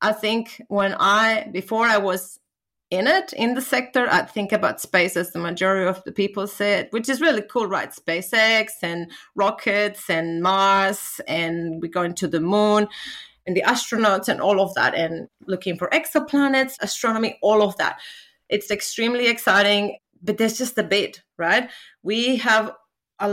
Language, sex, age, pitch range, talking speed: English, female, 30-49, 180-225 Hz, 170 wpm